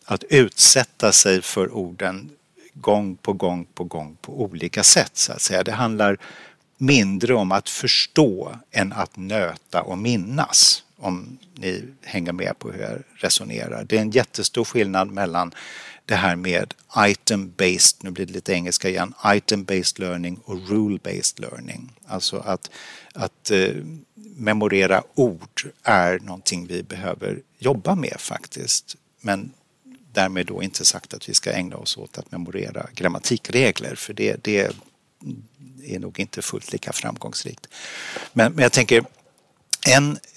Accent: native